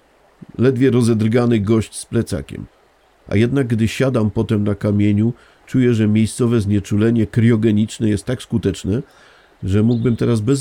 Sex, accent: male, native